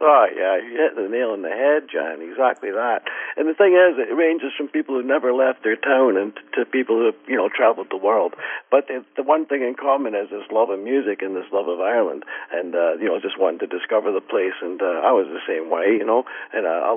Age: 60-79